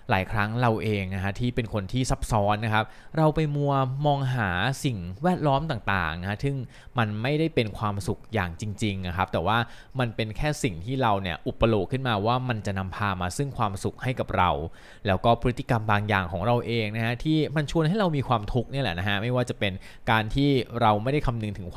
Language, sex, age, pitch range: Thai, male, 20-39, 100-125 Hz